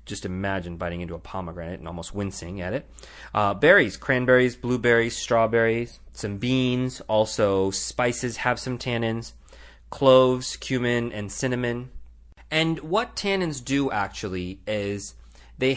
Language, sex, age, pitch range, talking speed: English, male, 30-49, 95-120 Hz, 130 wpm